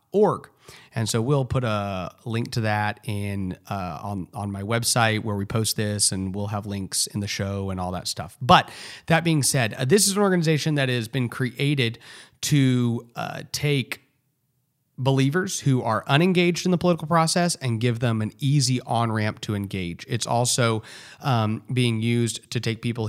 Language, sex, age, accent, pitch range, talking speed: English, male, 30-49, American, 105-135 Hz, 185 wpm